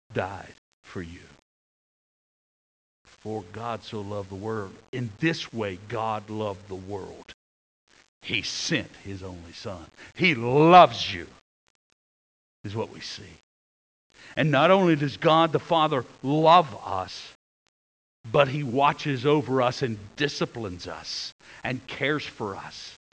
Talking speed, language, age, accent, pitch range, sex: 125 wpm, English, 60-79, American, 100-150 Hz, male